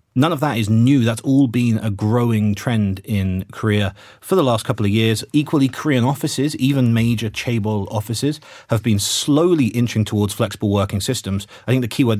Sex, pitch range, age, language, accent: male, 105-130 Hz, 30-49, Korean, British